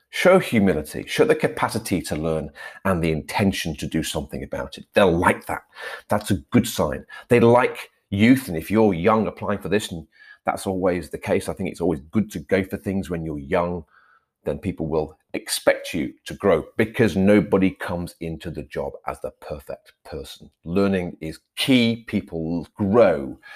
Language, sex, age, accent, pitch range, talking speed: English, male, 40-59, British, 85-110 Hz, 180 wpm